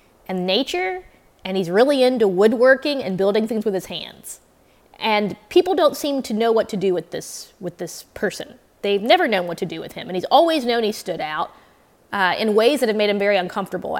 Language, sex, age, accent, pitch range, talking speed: English, female, 20-39, American, 185-235 Hz, 220 wpm